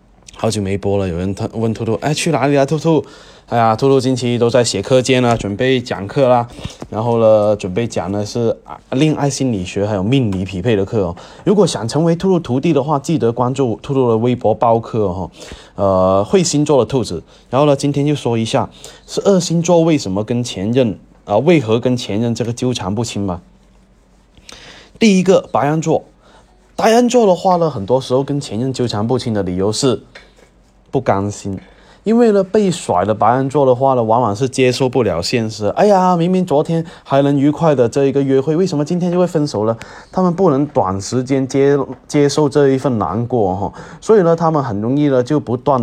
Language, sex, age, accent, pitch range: Chinese, male, 20-39, native, 110-155 Hz